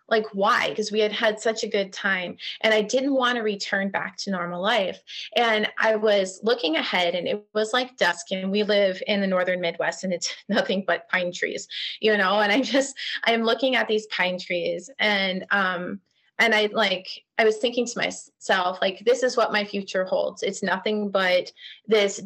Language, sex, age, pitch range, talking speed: English, female, 30-49, 190-225 Hz, 200 wpm